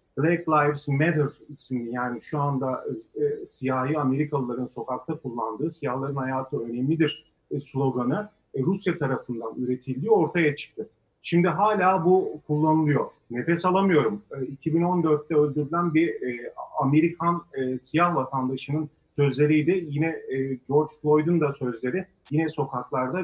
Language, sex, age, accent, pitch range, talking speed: Turkish, male, 40-59, native, 130-165 Hz, 120 wpm